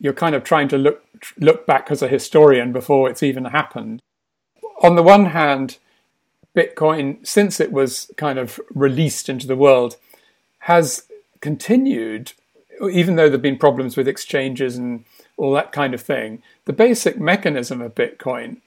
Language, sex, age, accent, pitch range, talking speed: English, male, 40-59, British, 135-190 Hz, 160 wpm